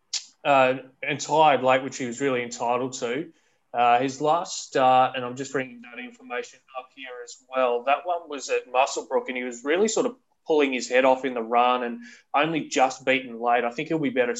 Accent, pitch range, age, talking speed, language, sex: Australian, 120-140 Hz, 20-39, 220 wpm, English, male